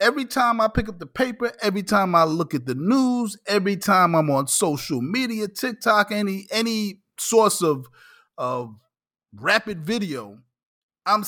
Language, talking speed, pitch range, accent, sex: English, 155 wpm, 150-210 Hz, American, male